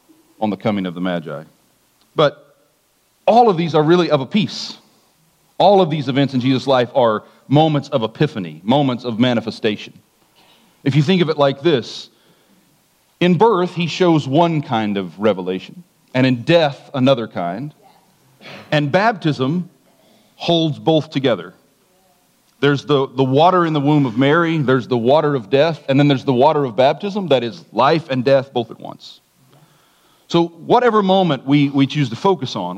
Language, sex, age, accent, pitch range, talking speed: English, male, 40-59, American, 120-160 Hz, 170 wpm